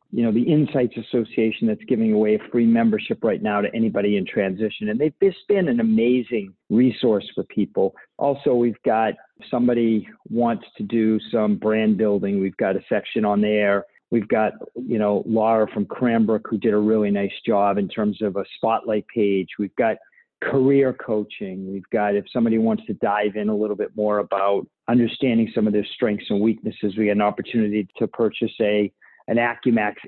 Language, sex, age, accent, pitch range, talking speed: English, male, 50-69, American, 105-135 Hz, 190 wpm